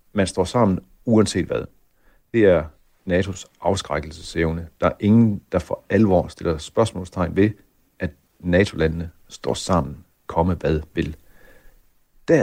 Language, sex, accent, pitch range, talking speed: Danish, male, native, 90-110 Hz, 125 wpm